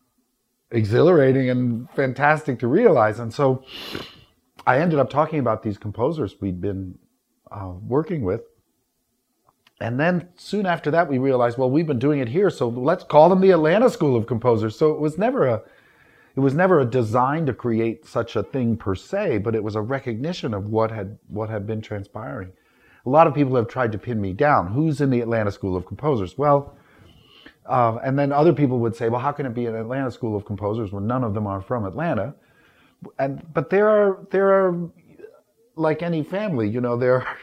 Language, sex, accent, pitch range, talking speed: English, male, American, 110-150 Hz, 200 wpm